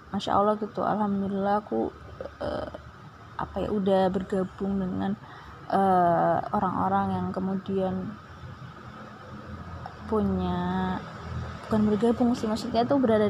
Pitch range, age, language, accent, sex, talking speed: 165-215 Hz, 20-39, Indonesian, native, female, 100 wpm